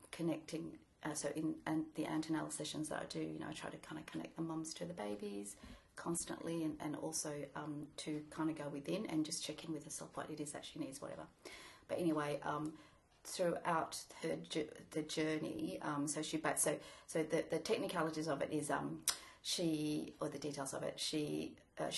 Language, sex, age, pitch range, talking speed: English, female, 30-49, 145-165 Hz, 215 wpm